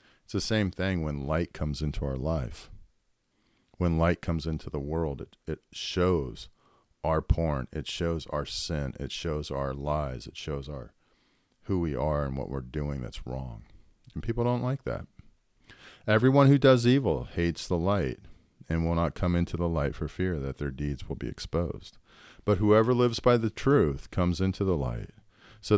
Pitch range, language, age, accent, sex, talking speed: 75-95 Hz, English, 50-69, American, male, 185 wpm